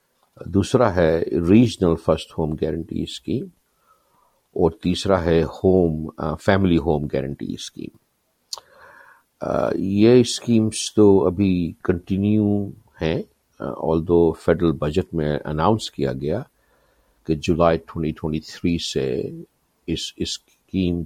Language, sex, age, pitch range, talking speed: Urdu, male, 50-69, 80-100 Hz, 105 wpm